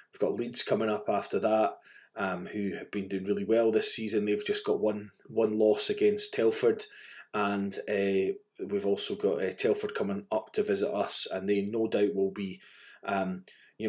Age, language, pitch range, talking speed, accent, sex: 20-39, English, 100-155 Hz, 190 wpm, British, male